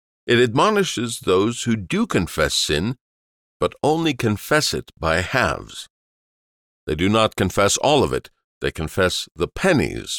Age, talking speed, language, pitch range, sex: 50-69, 140 wpm, English, 80-120 Hz, male